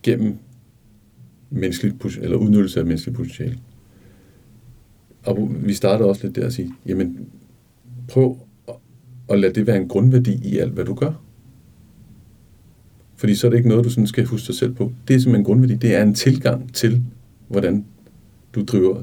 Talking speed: 170 wpm